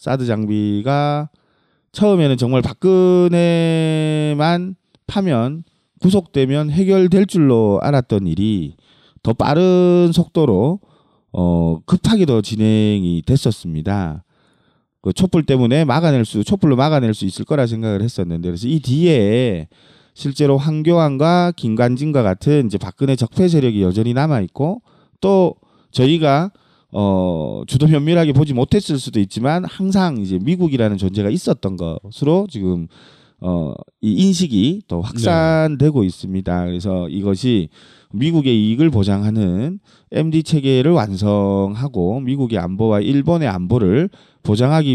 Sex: male